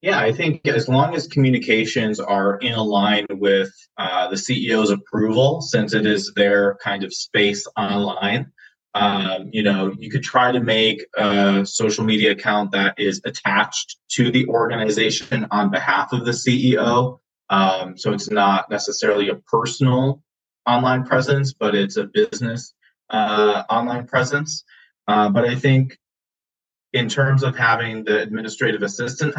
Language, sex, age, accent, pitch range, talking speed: English, male, 20-39, American, 105-130 Hz, 150 wpm